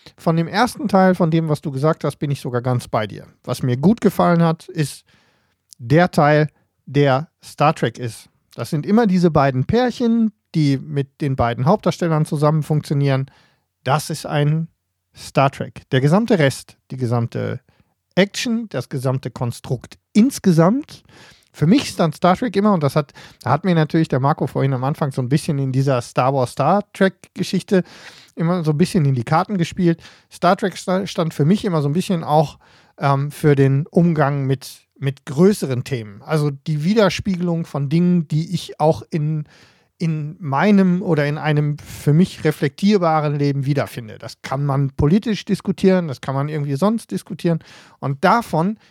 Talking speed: 170 wpm